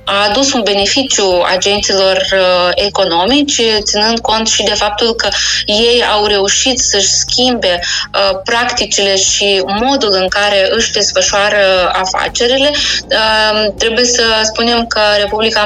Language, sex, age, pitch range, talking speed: Romanian, female, 20-39, 200-235 Hz, 115 wpm